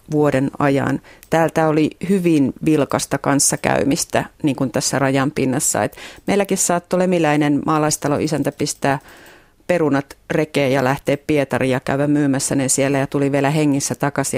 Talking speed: 140 wpm